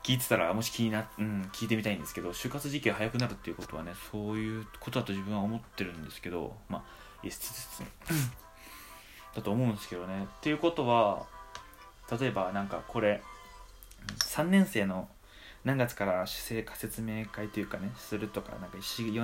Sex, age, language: male, 20-39, Japanese